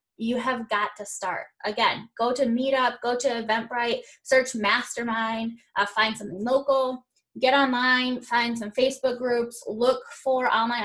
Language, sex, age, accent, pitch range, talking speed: English, female, 10-29, American, 200-250 Hz, 150 wpm